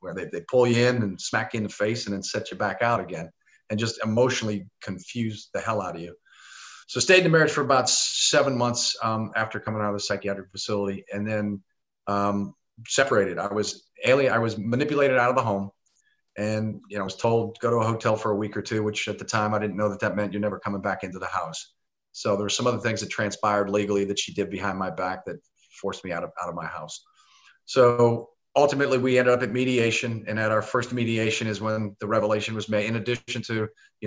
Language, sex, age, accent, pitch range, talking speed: English, male, 40-59, American, 105-120 Hz, 245 wpm